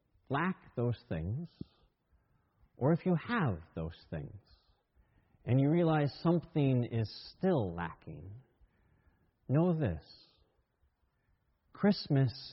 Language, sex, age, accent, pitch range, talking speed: English, male, 40-59, American, 150-215 Hz, 90 wpm